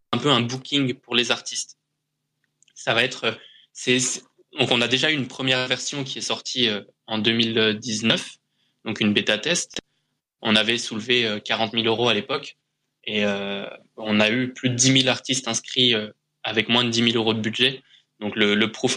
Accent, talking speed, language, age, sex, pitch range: French, 185 wpm, English, 20-39, male, 110-130 Hz